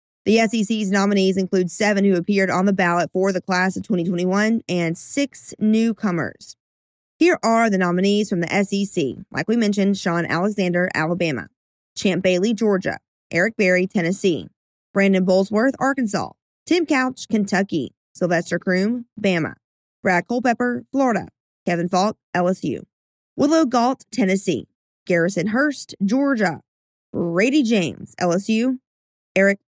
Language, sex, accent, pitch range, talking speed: English, female, American, 180-220 Hz, 125 wpm